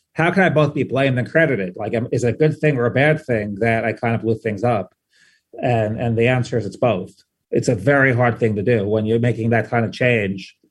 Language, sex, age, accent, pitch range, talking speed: English, male, 30-49, American, 110-130 Hz, 260 wpm